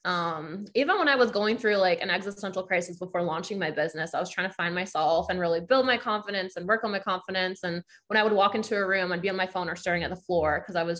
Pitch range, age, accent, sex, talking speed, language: 175-210 Hz, 20-39, American, female, 285 wpm, English